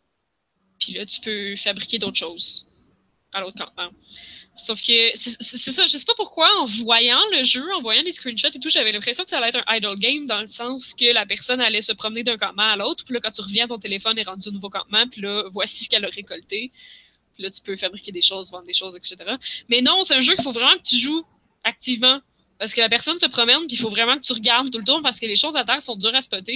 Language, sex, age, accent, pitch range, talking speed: French, female, 20-39, Canadian, 220-275 Hz, 275 wpm